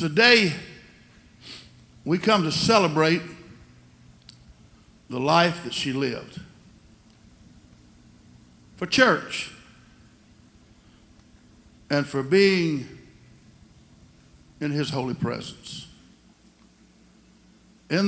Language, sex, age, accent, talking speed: English, male, 60-79, American, 65 wpm